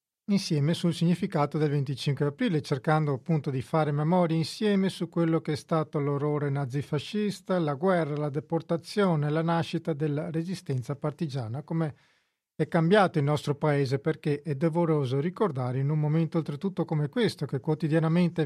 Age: 40-59